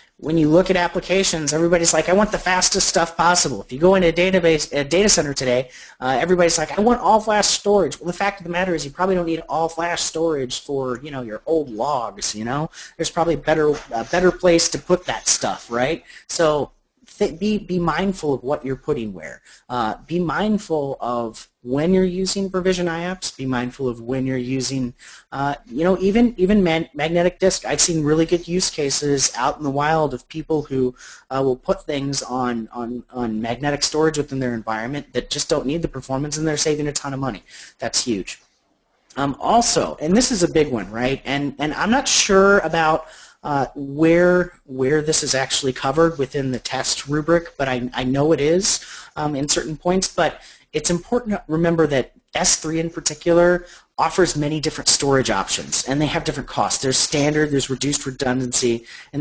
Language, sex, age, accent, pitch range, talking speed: English, male, 30-49, American, 130-175 Hz, 200 wpm